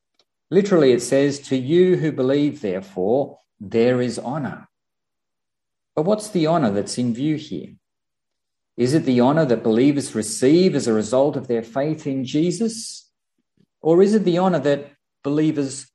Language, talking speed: English, 155 wpm